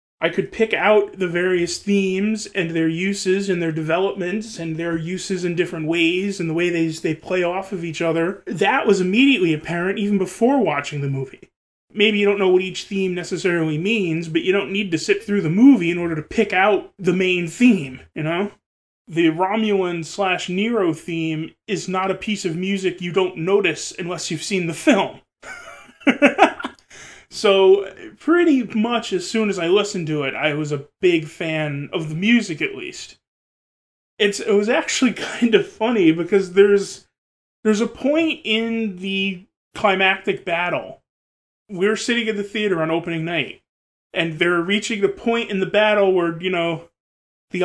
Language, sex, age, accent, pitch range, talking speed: English, male, 20-39, American, 170-210 Hz, 180 wpm